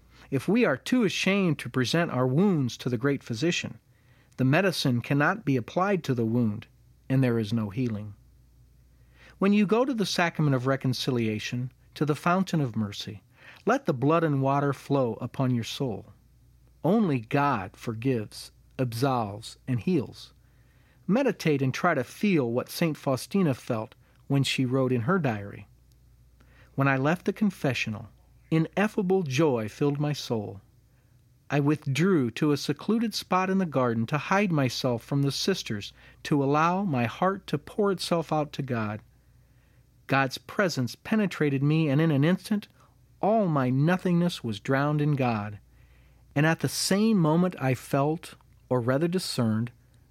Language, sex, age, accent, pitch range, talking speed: English, male, 40-59, American, 120-170 Hz, 155 wpm